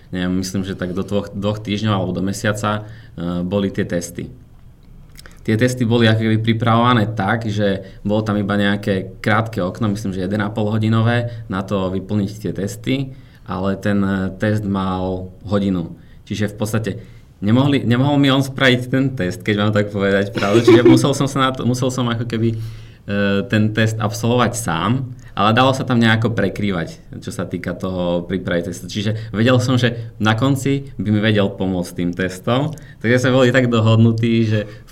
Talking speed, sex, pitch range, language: 175 wpm, male, 95-115 Hz, Slovak